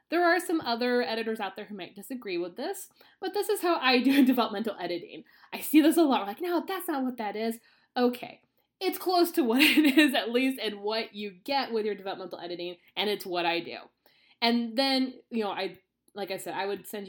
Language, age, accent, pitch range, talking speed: English, 20-39, American, 165-230 Hz, 230 wpm